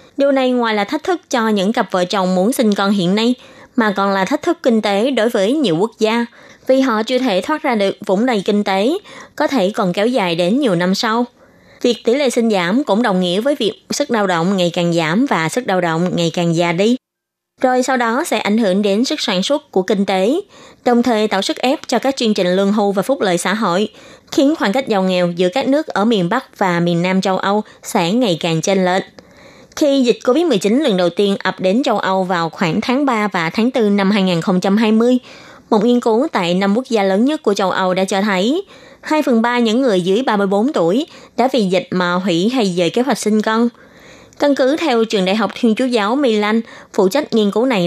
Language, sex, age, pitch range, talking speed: Vietnamese, female, 20-39, 190-255 Hz, 240 wpm